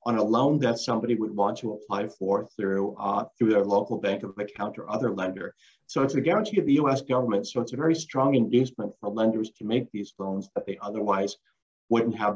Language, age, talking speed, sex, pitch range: English, 50-69, 225 wpm, male, 105-150 Hz